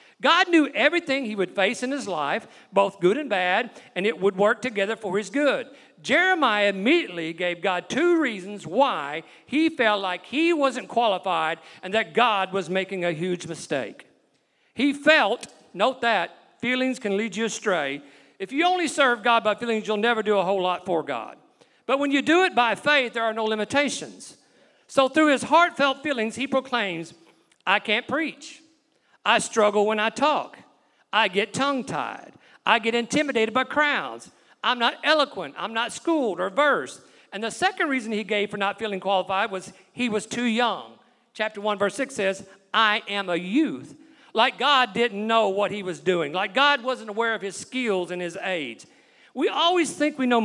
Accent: American